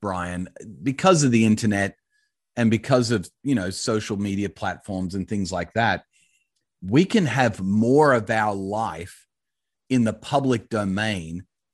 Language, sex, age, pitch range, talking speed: English, male, 30-49, 105-125 Hz, 145 wpm